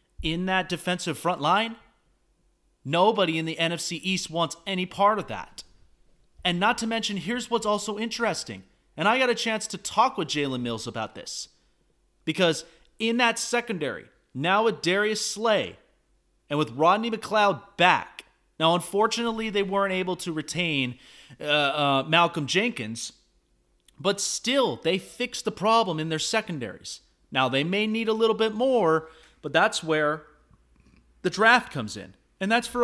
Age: 30-49